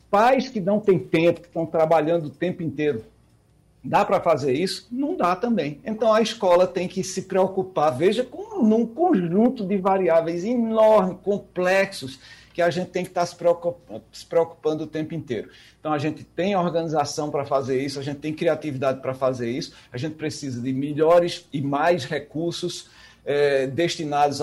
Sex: male